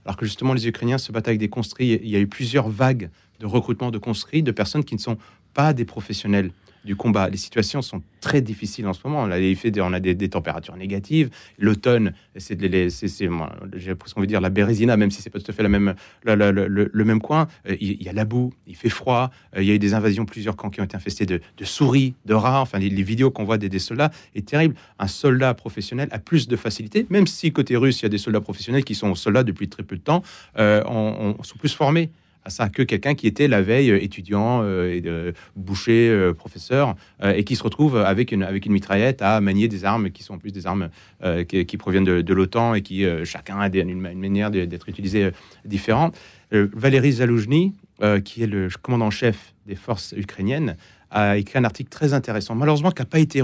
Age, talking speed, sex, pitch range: 30-49, 255 wpm, male, 95-120 Hz